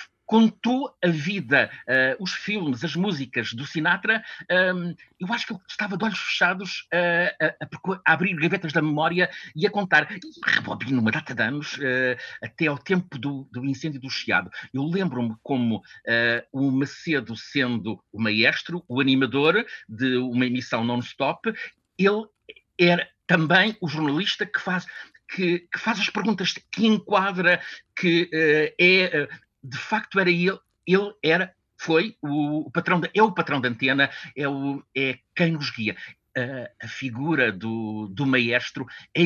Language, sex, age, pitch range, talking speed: Portuguese, male, 50-69, 125-180 Hz, 170 wpm